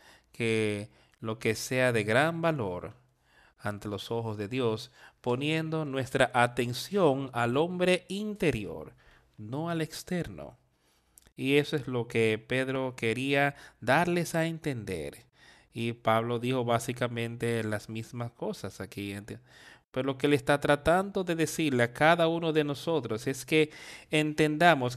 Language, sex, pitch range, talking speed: Spanish, male, 115-155 Hz, 130 wpm